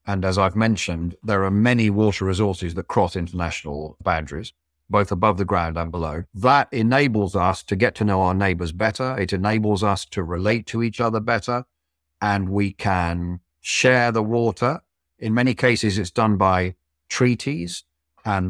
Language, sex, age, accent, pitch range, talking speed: English, male, 50-69, British, 85-115 Hz, 170 wpm